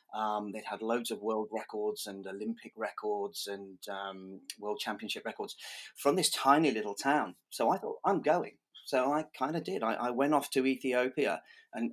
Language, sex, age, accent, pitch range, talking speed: English, male, 30-49, British, 100-125 Hz, 190 wpm